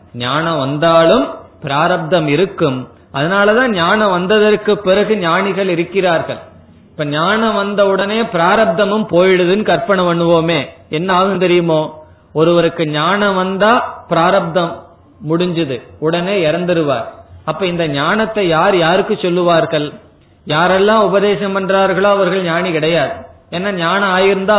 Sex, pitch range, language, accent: male, 155-200 Hz, Tamil, native